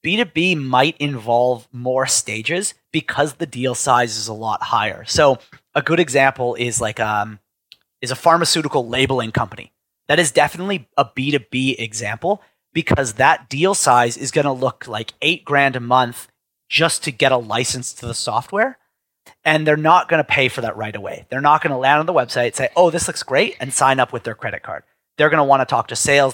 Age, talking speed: 30-49, 205 wpm